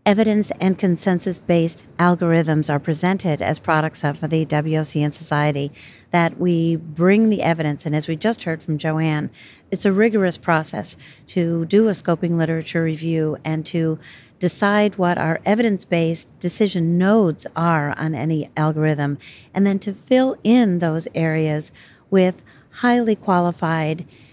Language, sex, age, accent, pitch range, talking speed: English, female, 50-69, American, 155-185 Hz, 145 wpm